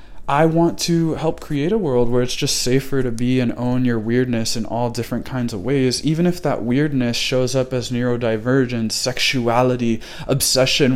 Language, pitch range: English, 120-145 Hz